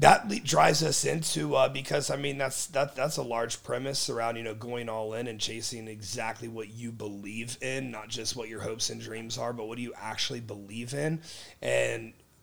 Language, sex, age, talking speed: English, male, 30-49, 210 wpm